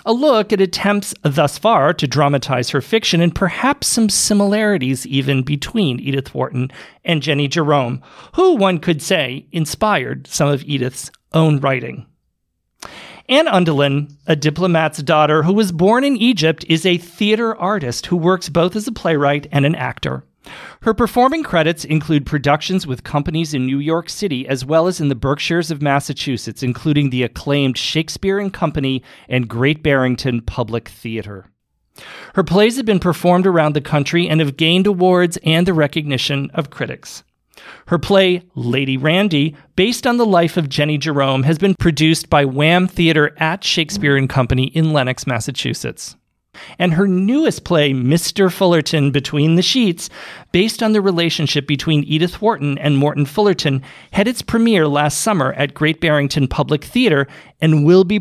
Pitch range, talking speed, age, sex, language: 140-185 Hz, 160 wpm, 40-59, male, English